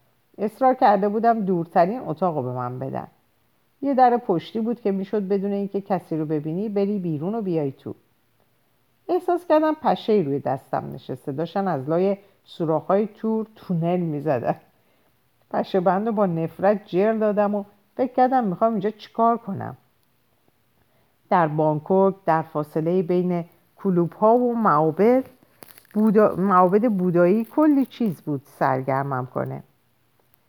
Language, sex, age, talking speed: Persian, female, 50-69, 140 wpm